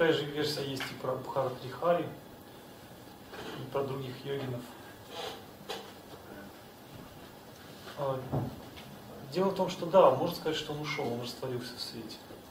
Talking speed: 125 wpm